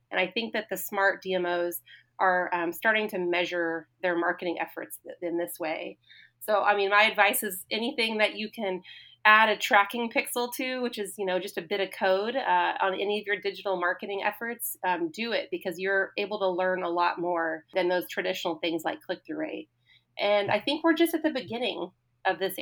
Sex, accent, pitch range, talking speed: female, American, 175-210 Hz, 205 wpm